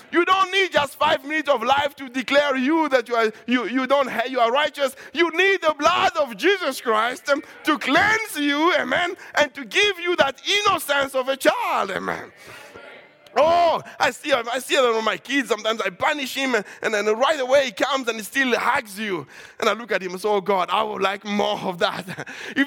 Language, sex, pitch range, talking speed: English, male, 225-300 Hz, 215 wpm